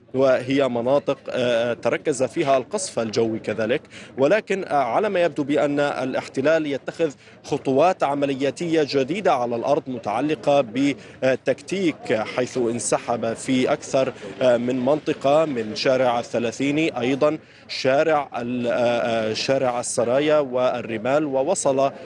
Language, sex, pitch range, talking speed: Arabic, male, 125-145 Hz, 100 wpm